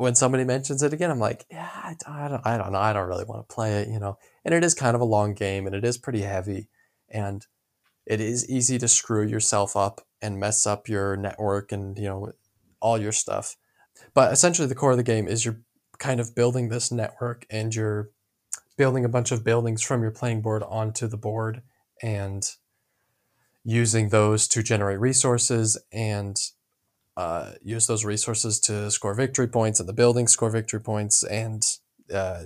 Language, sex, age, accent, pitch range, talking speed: English, male, 20-39, American, 105-120 Hz, 195 wpm